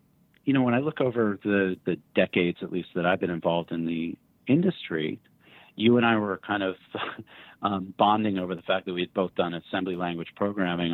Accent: American